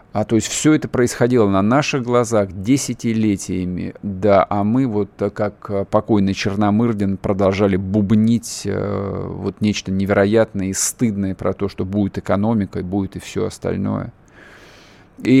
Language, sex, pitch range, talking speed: Russian, male, 100-125 Hz, 130 wpm